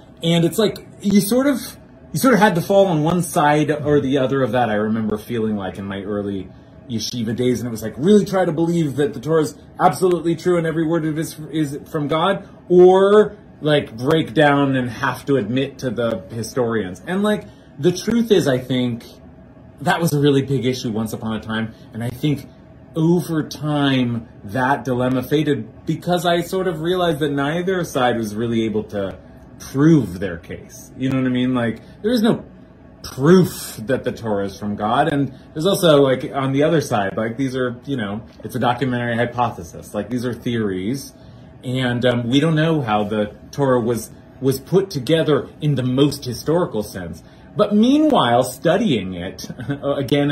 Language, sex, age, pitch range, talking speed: English, male, 30-49, 115-160 Hz, 195 wpm